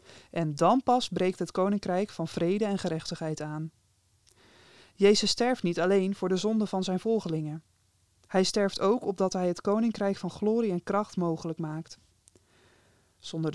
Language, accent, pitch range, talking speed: Dutch, Dutch, 155-205 Hz, 155 wpm